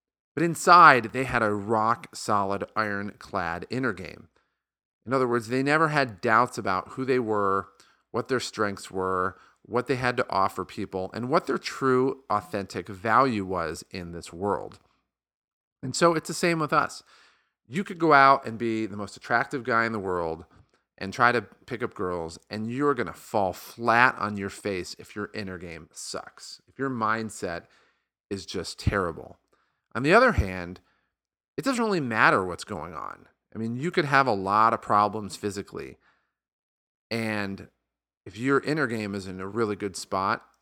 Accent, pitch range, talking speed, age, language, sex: American, 100-130 Hz, 175 wpm, 40-59, English, male